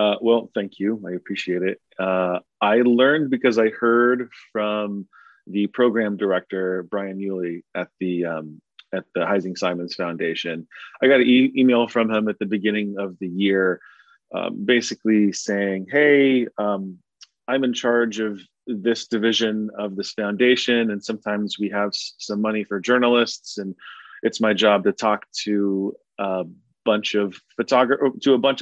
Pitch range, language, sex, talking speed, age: 100-120 Hz, English, male, 160 wpm, 30-49